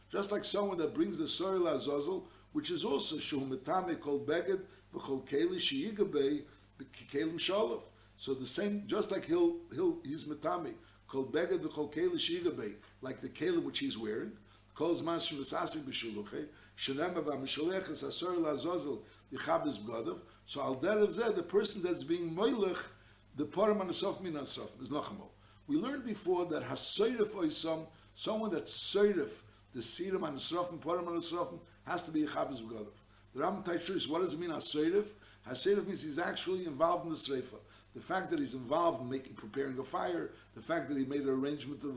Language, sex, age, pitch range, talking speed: English, male, 60-79, 135-215 Hz, 160 wpm